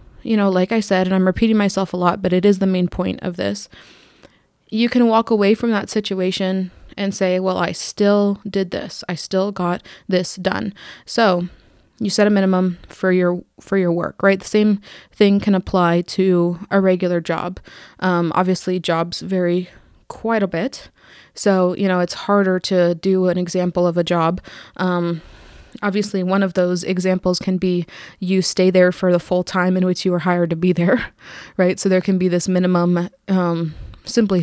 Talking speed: 190 wpm